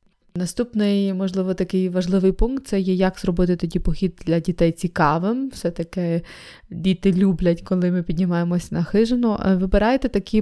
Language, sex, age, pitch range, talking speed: Ukrainian, female, 20-39, 170-195 Hz, 140 wpm